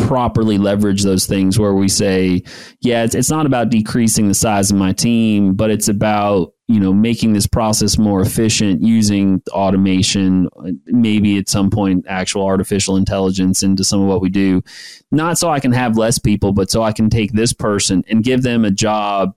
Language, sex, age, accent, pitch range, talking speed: English, male, 30-49, American, 100-115 Hz, 190 wpm